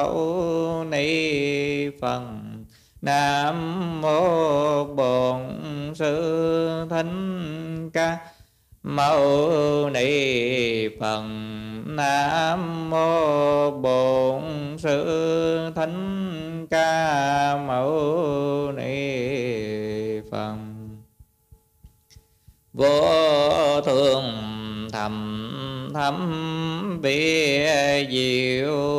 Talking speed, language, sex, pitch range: 40 wpm, Vietnamese, male, 125-160 Hz